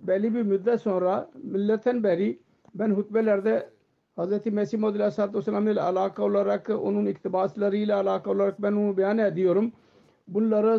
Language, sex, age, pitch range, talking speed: Turkish, male, 50-69, 190-220 Hz, 130 wpm